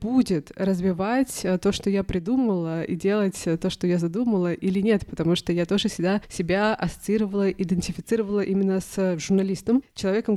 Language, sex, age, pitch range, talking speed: Russian, female, 20-39, 175-205 Hz, 150 wpm